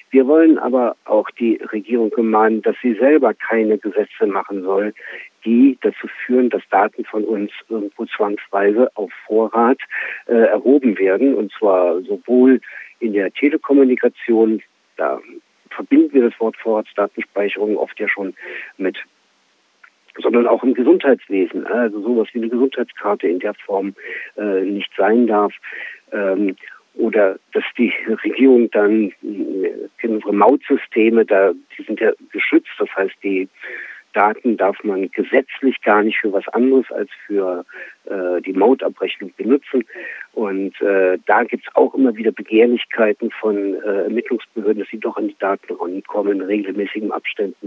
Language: German